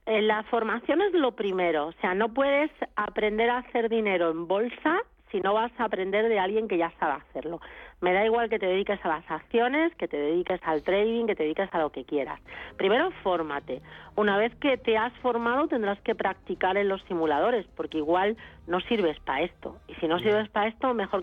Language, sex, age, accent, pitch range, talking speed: Spanish, female, 40-59, Spanish, 175-230 Hz, 210 wpm